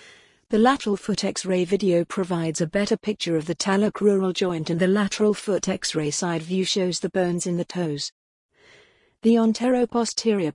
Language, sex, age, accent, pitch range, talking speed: English, female, 50-69, British, 170-210 Hz, 160 wpm